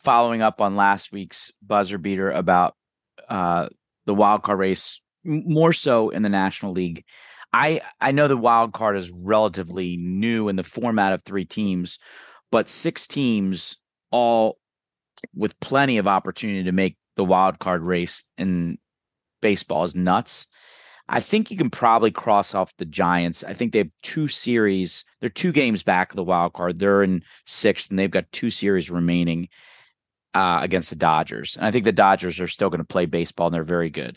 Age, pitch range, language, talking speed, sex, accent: 30-49, 90-110 Hz, English, 180 wpm, male, American